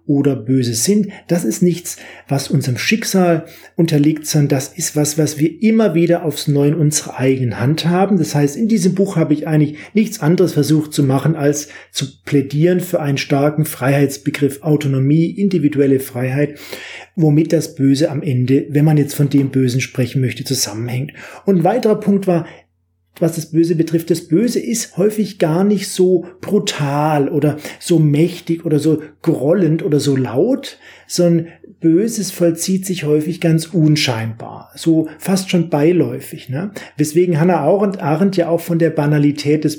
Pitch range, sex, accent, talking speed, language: 140-170 Hz, male, German, 165 wpm, German